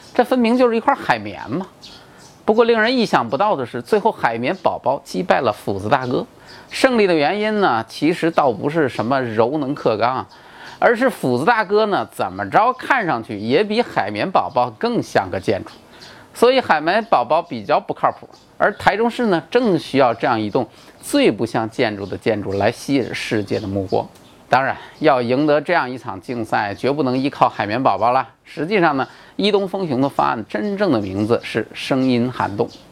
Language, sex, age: Chinese, male, 30-49